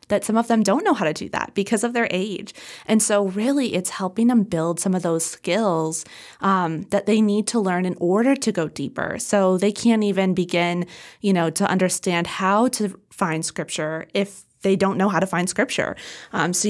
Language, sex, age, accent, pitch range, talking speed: English, female, 20-39, American, 170-205 Hz, 210 wpm